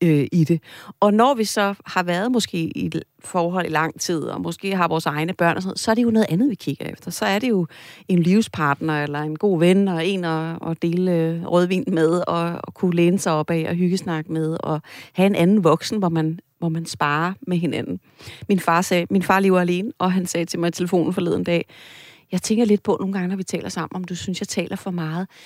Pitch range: 160-195 Hz